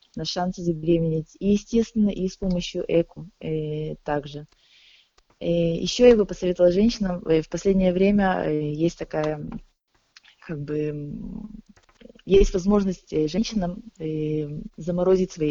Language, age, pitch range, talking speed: English, 20-39, 160-195 Hz, 105 wpm